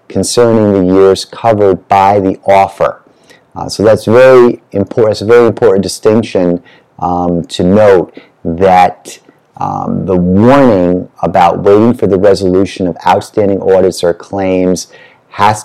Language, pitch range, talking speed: English, 90-110 Hz, 135 wpm